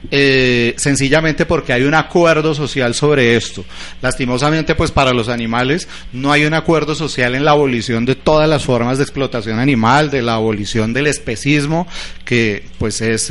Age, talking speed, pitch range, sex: 30-49, 165 wpm, 115-140 Hz, male